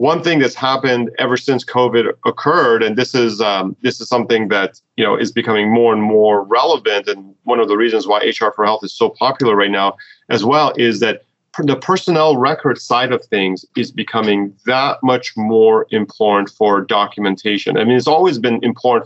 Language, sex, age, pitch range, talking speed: English, male, 30-49, 110-135 Hz, 195 wpm